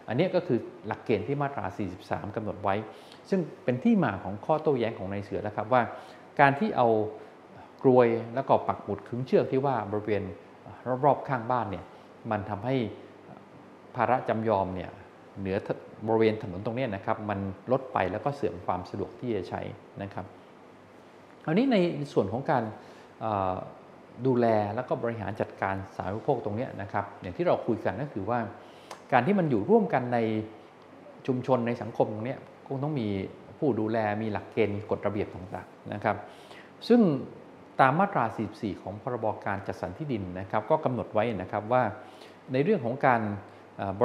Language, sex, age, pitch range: Thai, male, 20-39, 100-130 Hz